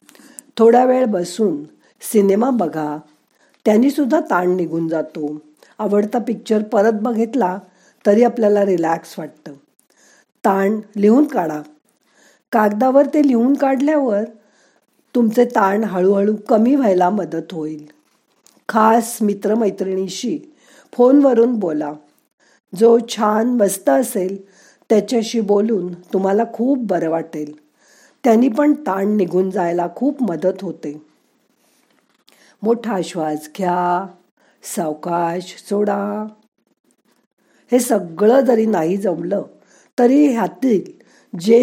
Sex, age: female, 50-69